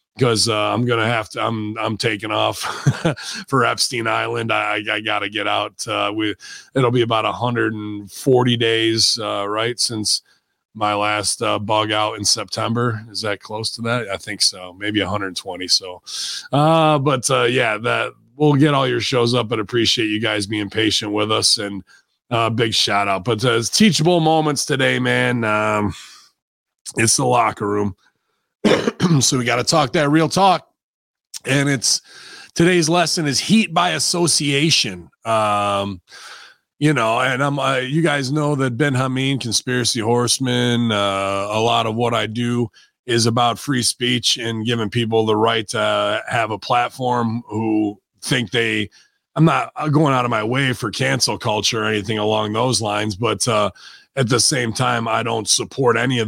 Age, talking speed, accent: 30-49, 175 wpm, American